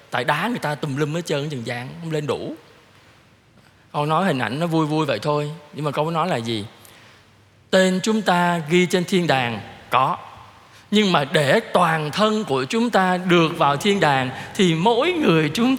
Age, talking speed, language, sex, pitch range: 20-39, 200 wpm, Vietnamese, male, 135-185 Hz